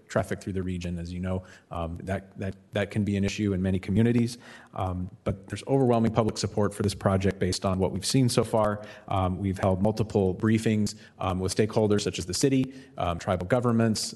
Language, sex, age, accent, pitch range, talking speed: English, male, 30-49, American, 95-110 Hz, 210 wpm